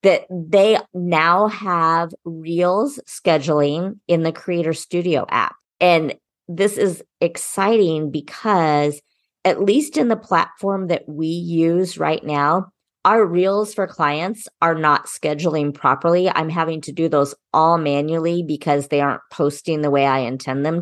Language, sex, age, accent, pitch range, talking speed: English, female, 40-59, American, 160-195 Hz, 145 wpm